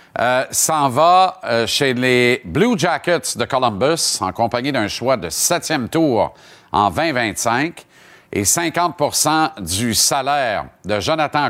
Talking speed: 130 wpm